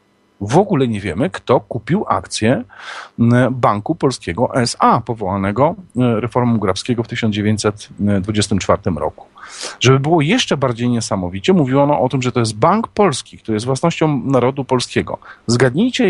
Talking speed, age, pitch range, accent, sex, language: 135 wpm, 40-59, 120-160 Hz, native, male, Polish